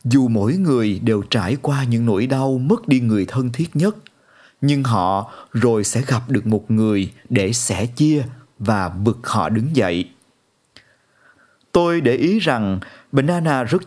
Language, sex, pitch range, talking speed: Vietnamese, male, 110-160 Hz, 160 wpm